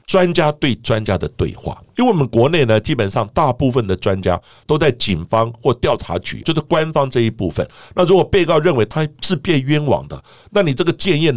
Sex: male